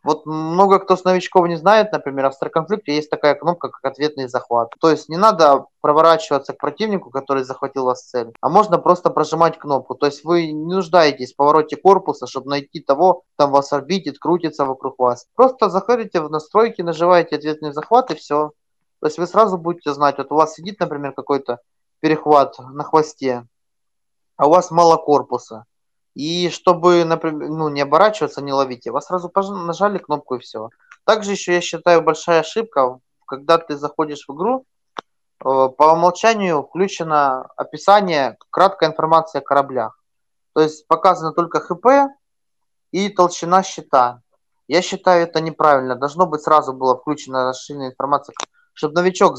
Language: Russian